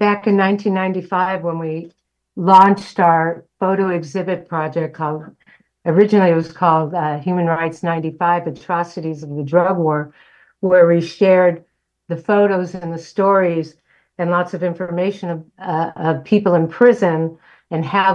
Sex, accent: female, American